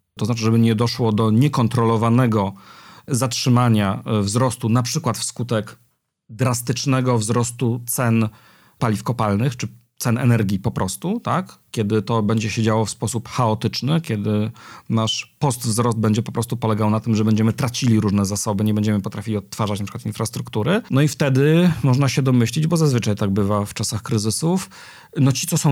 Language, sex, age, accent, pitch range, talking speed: Polish, male, 40-59, native, 105-125 Hz, 160 wpm